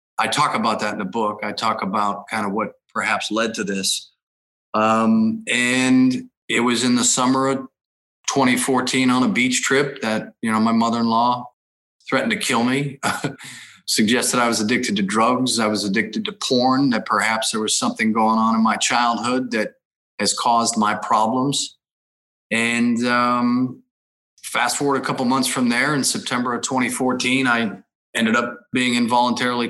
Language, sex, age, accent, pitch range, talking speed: English, male, 30-49, American, 110-130 Hz, 170 wpm